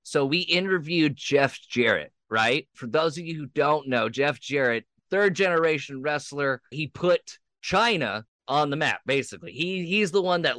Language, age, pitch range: English, 20-39, 120-165 Hz